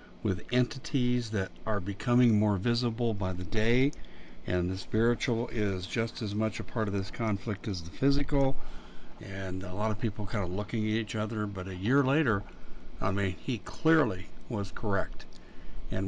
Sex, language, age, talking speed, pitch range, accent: male, English, 60-79, 175 wpm, 95-120 Hz, American